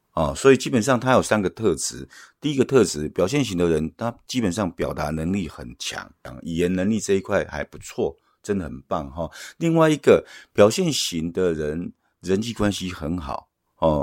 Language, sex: Chinese, male